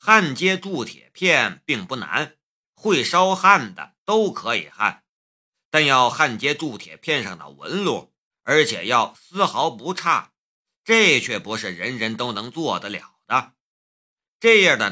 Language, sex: Chinese, male